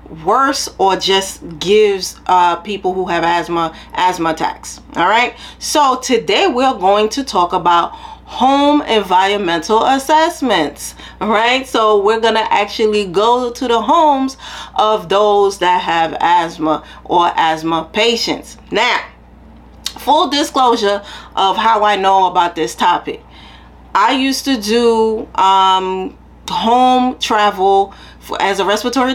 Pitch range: 180-230 Hz